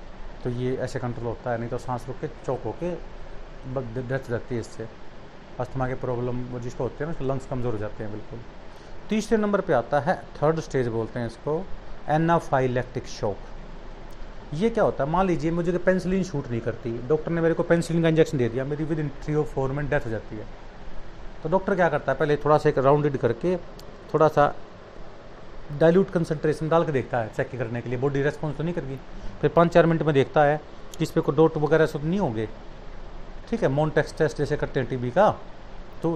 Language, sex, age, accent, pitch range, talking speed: Hindi, male, 40-59, native, 125-160 Hz, 215 wpm